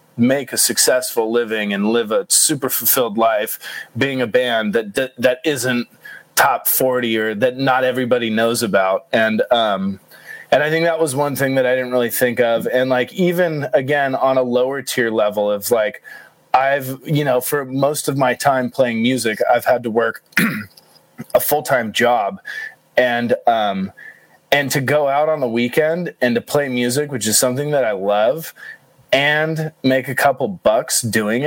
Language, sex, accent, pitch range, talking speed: English, male, American, 115-140 Hz, 175 wpm